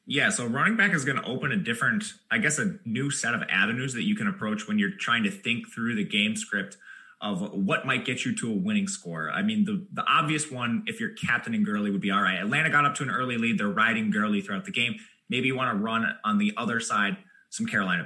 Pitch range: 130-210 Hz